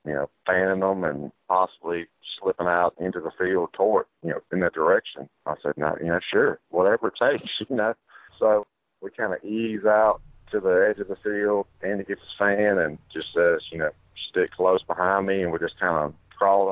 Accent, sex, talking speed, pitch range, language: American, male, 215 wpm, 90-110 Hz, English